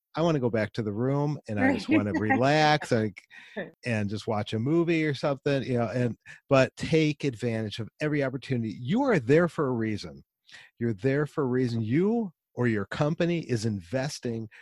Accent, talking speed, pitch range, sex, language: American, 195 wpm, 115-160 Hz, male, English